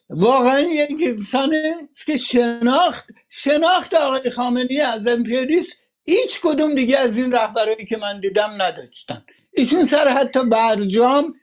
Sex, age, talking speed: male, 60-79, 120 wpm